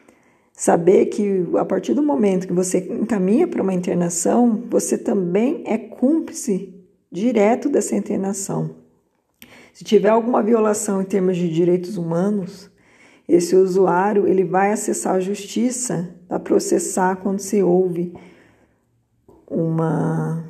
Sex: female